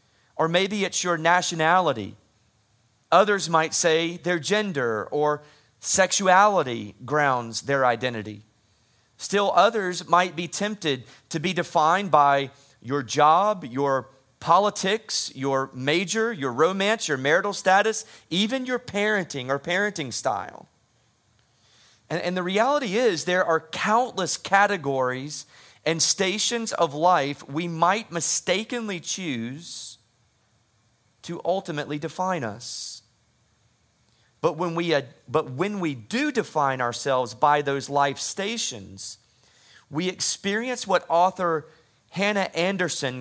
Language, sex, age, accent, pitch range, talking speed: English, male, 30-49, American, 120-180 Hz, 110 wpm